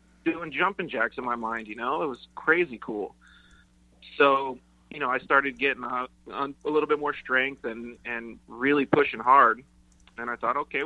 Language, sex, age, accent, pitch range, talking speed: English, male, 30-49, American, 115-130 Hz, 180 wpm